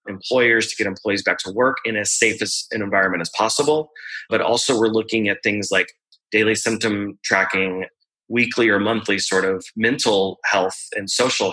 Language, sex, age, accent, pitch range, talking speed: English, male, 30-49, American, 105-120 Hz, 175 wpm